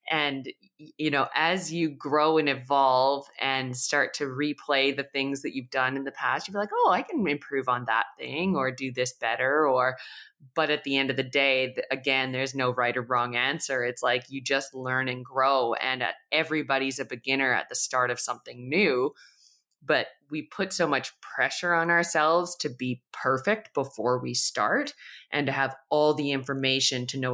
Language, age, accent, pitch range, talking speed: English, 20-39, American, 130-155 Hz, 195 wpm